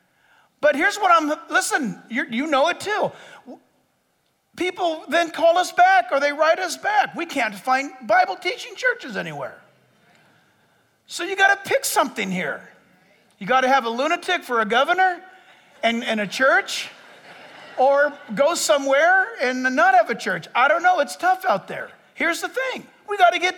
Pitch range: 220-335 Hz